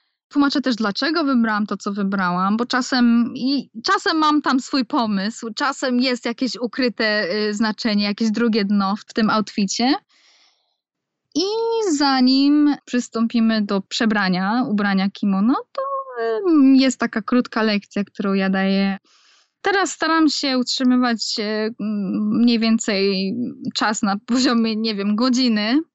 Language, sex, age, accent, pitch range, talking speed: Polish, female, 10-29, native, 215-280 Hz, 120 wpm